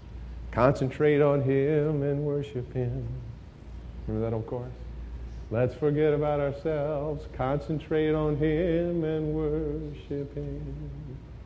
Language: English